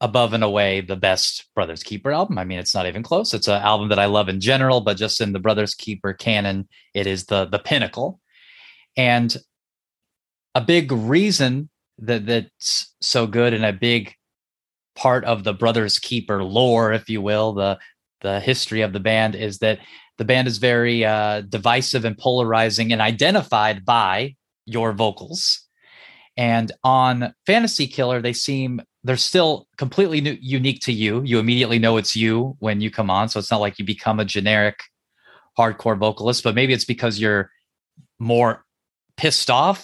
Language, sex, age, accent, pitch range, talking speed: English, male, 30-49, American, 110-135 Hz, 170 wpm